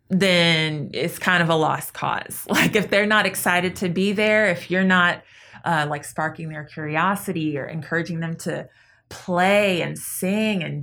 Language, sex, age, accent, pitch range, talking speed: English, female, 20-39, American, 155-185 Hz, 170 wpm